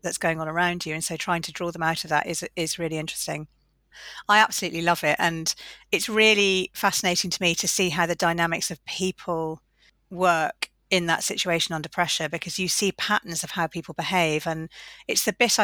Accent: British